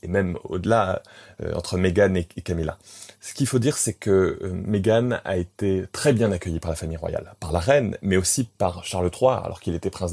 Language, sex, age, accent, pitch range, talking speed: French, male, 20-39, French, 95-115 Hz, 225 wpm